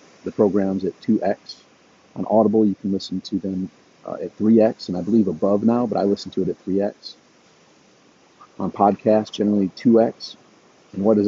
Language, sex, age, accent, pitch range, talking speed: English, male, 40-59, American, 95-105 Hz, 175 wpm